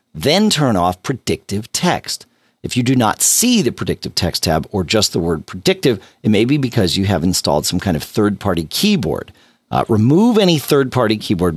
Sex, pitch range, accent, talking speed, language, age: male, 85-125 Hz, American, 185 wpm, English, 40-59